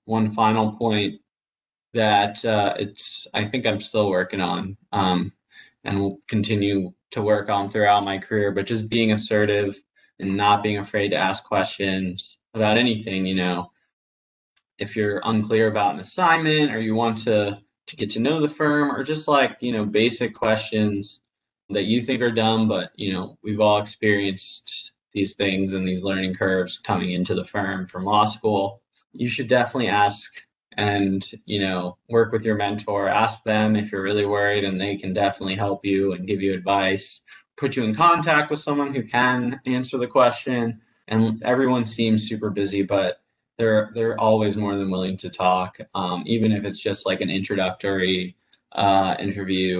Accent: American